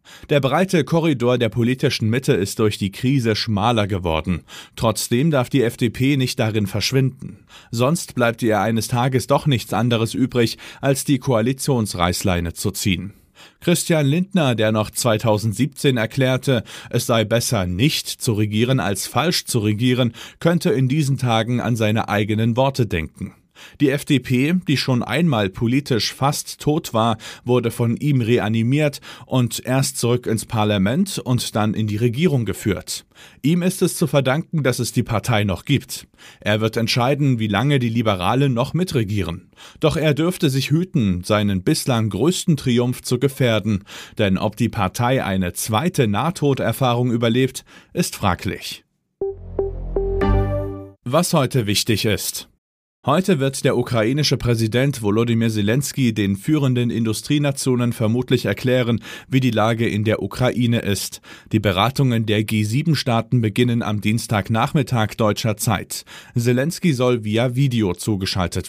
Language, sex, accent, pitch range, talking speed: German, male, German, 110-140 Hz, 140 wpm